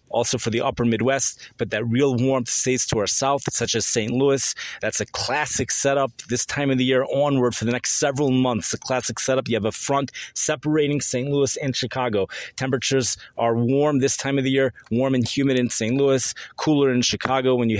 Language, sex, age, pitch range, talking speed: English, male, 30-49, 115-140 Hz, 210 wpm